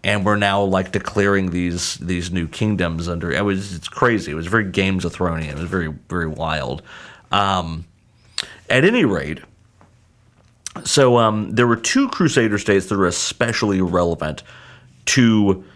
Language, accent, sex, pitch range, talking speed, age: English, American, male, 85-110 Hz, 155 wpm, 40-59